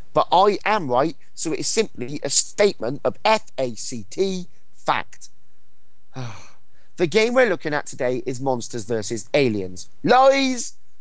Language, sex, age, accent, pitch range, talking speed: English, male, 30-49, British, 125-175 Hz, 130 wpm